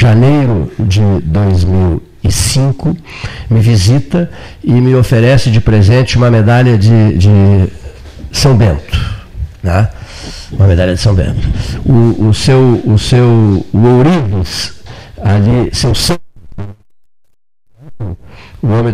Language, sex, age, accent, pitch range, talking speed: Portuguese, male, 50-69, Brazilian, 100-130 Hz, 100 wpm